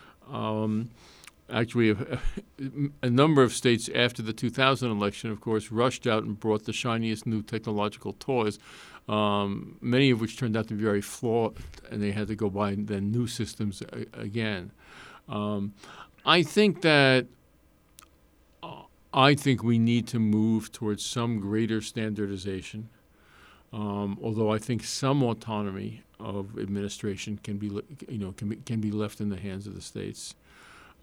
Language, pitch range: English, 100-120 Hz